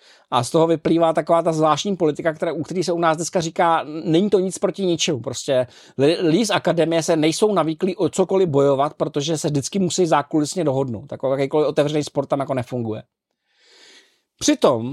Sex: male